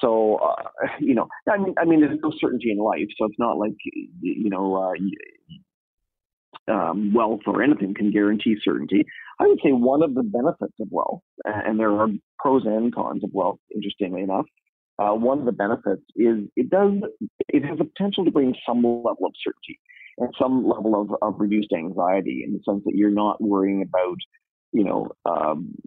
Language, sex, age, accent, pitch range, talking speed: English, male, 40-59, American, 100-125 Hz, 190 wpm